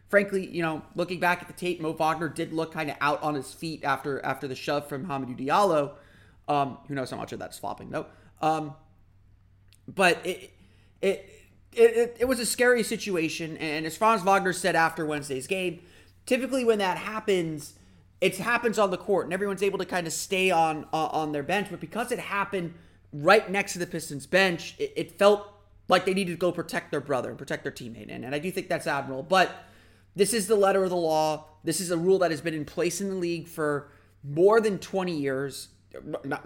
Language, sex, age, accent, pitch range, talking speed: English, male, 30-49, American, 145-185 Hz, 215 wpm